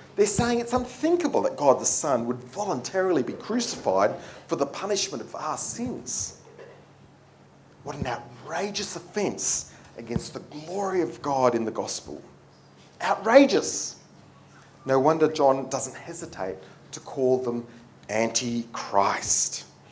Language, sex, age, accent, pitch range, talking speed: English, male, 40-59, Australian, 135-205 Hz, 120 wpm